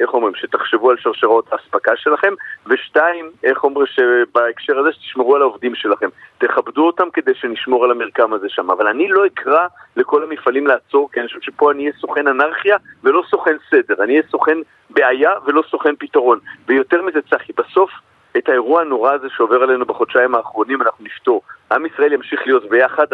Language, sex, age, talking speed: Hebrew, male, 40-59, 180 wpm